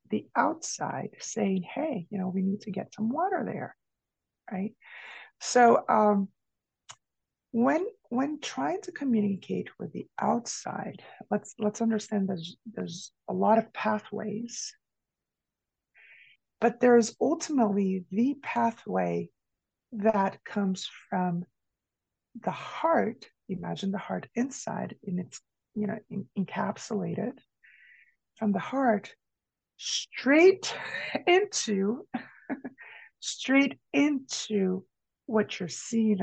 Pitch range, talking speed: 195-245 Hz, 105 wpm